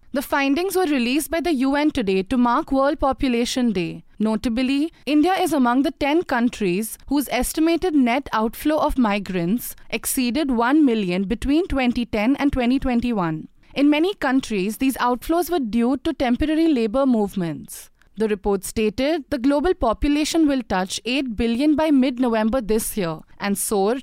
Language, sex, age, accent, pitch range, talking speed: English, female, 30-49, Indian, 225-295 Hz, 150 wpm